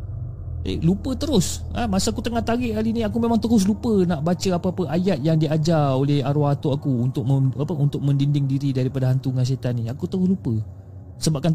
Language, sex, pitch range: Malay, male, 110-180 Hz